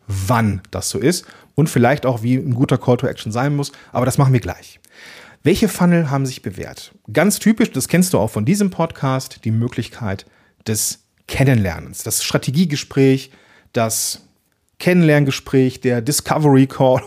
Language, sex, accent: German, male, German